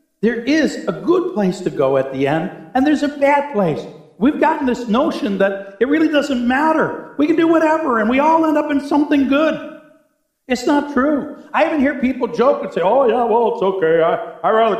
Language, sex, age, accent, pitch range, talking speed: English, male, 60-79, American, 185-310 Hz, 215 wpm